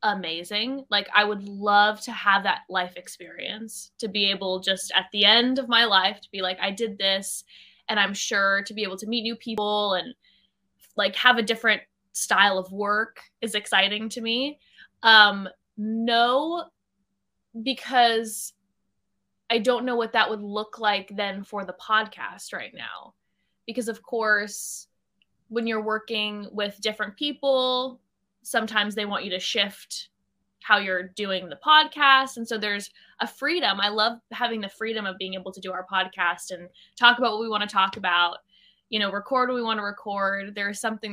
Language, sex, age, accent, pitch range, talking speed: English, female, 20-39, American, 195-230 Hz, 175 wpm